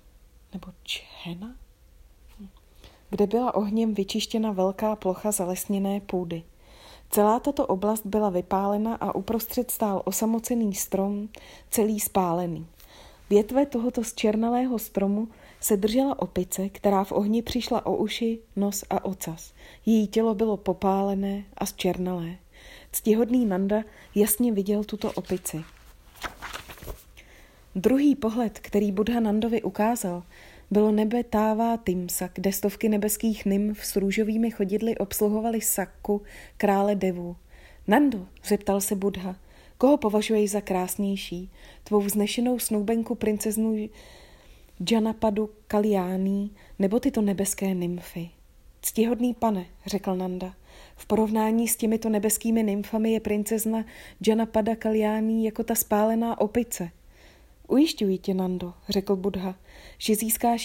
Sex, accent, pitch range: female, native, 190-225 Hz